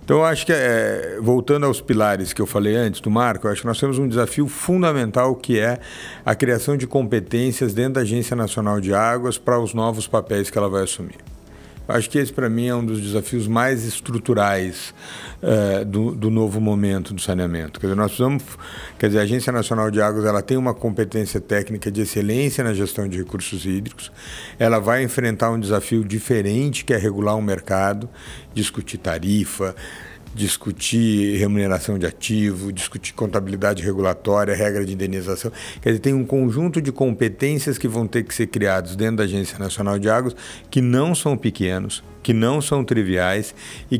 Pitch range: 100-125 Hz